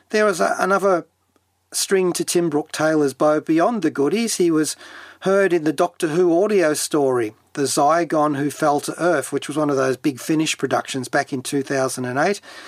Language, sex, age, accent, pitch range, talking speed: English, male, 40-59, Australian, 140-185 Hz, 180 wpm